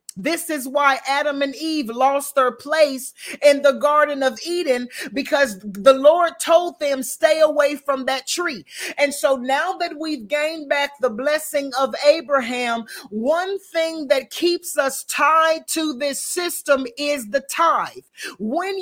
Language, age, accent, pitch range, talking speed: English, 40-59, American, 260-310 Hz, 155 wpm